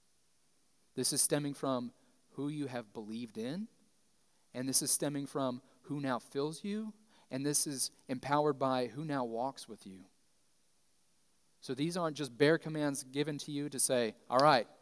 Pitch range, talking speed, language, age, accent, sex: 110-140 Hz, 165 wpm, English, 30-49, American, male